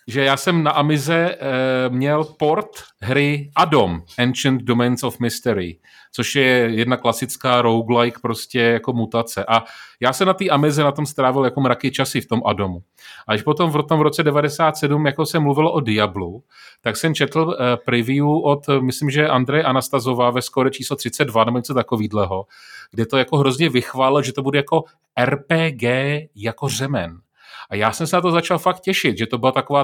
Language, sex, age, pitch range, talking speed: Czech, male, 30-49, 115-145 Hz, 185 wpm